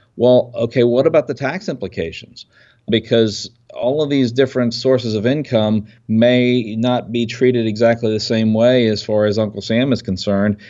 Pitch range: 100-120 Hz